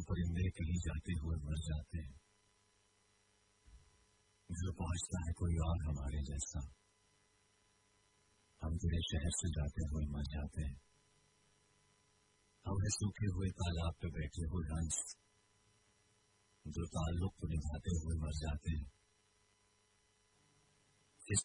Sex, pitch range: female, 80-100 Hz